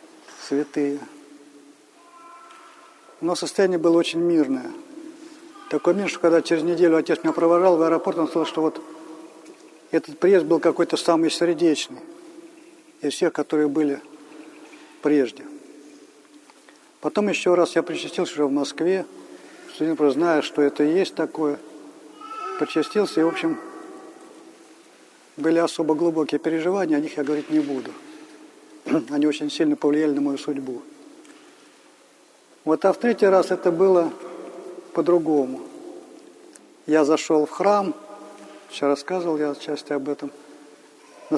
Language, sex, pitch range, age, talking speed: Russian, male, 150-205 Hz, 50-69, 125 wpm